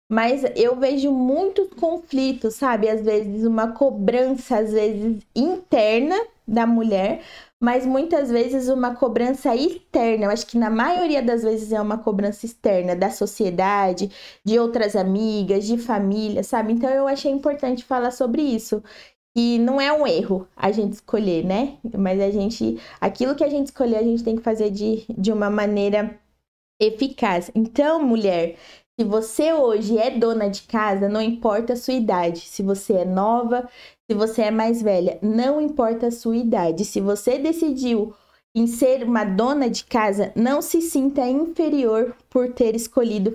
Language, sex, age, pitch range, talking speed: Portuguese, female, 20-39, 205-255 Hz, 165 wpm